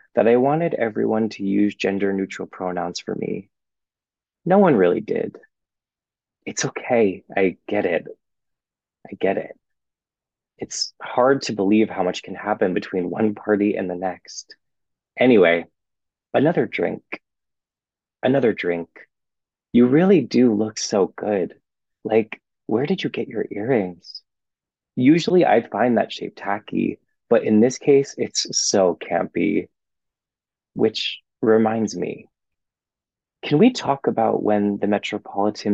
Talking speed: 130 wpm